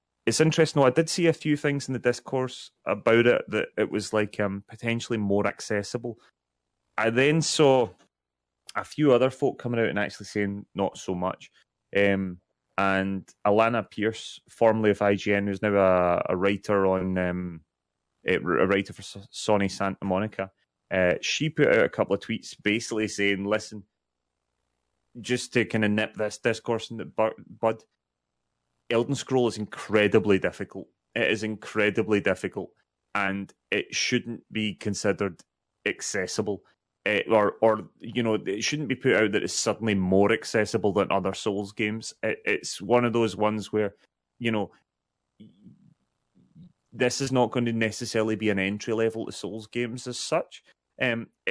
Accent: British